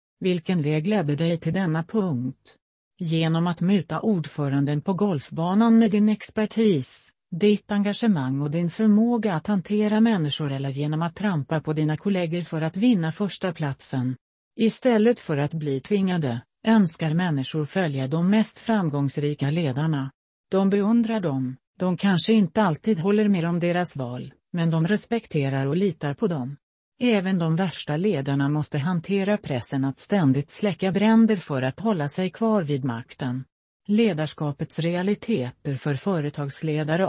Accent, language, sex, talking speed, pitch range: native, Swedish, female, 145 wpm, 145-200 Hz